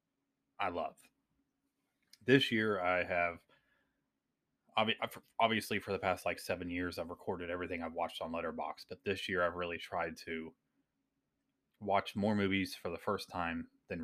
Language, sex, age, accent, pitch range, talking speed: English, male, 30-49, American, 90-105 Hz, 150 wpm